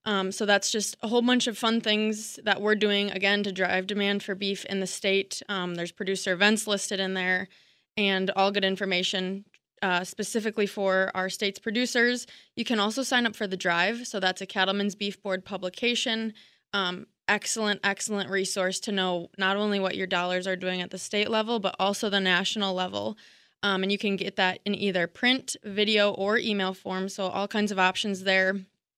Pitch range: 190-215 Hz